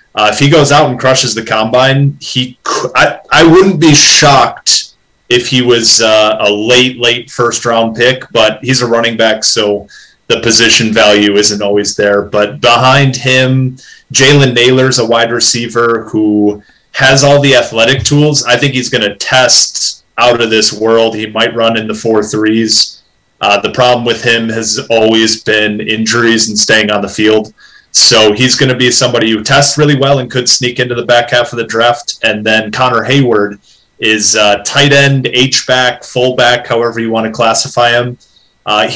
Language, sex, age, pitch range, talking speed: English, male, 30-49, 110-130 Hz, 185 wpm